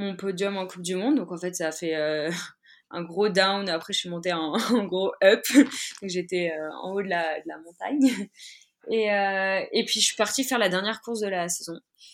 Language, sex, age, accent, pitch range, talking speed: French, female, 20-39, French, 165-200 Hz, 230 wpm